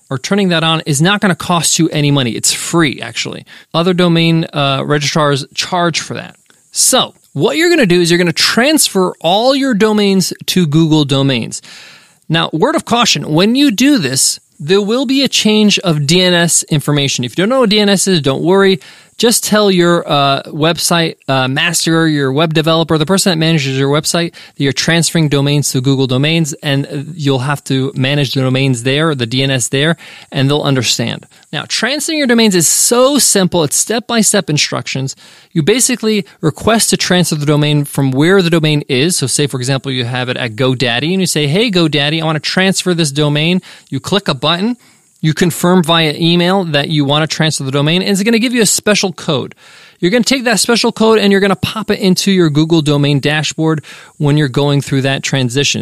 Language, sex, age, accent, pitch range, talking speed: English, male, 20-39, American, 140-190 Hz, 205 wpm